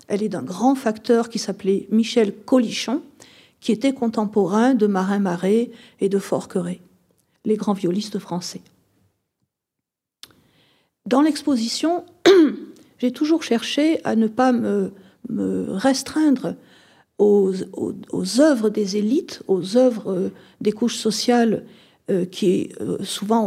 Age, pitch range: 50-69, 200-270 Hz